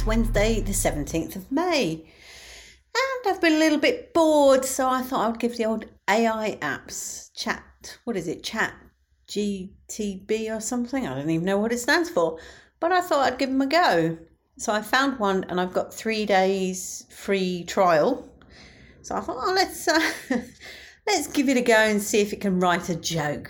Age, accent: 40-59, British